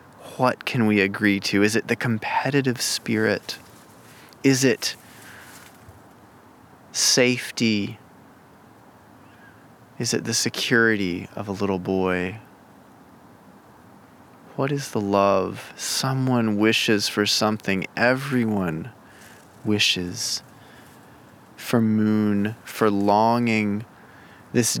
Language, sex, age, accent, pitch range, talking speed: English, male, 20-39, American, 105-120 Hz, 85 wpm